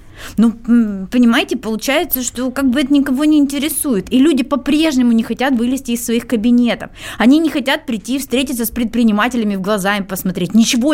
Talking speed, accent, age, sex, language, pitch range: 170 wpm, native, 20-39, female, Russian, 225-275 Hz